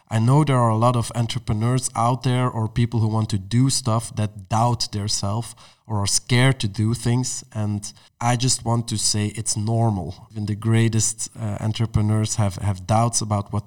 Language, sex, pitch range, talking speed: English, male, 105-120 Hz, 200 wpm